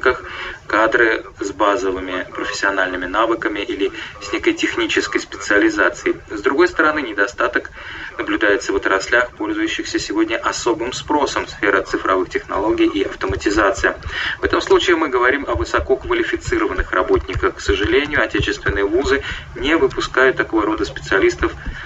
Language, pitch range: Russian, 315-380 Hz